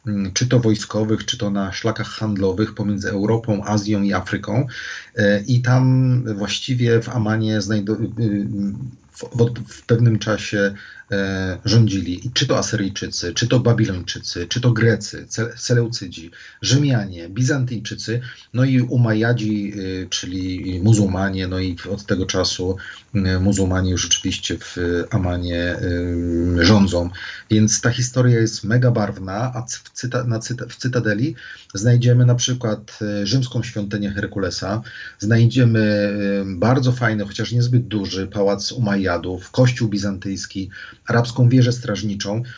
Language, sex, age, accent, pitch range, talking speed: Polish, male, 40-59, native, 100-120 Hz, 130 wpm